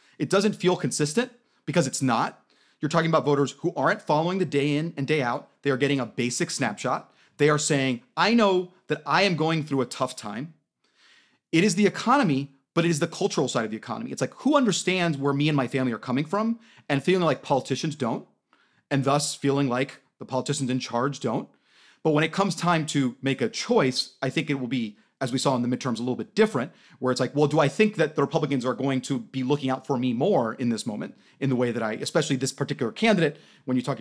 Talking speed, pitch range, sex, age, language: 240 wpm, 130-165 Hz, male, 30-49, English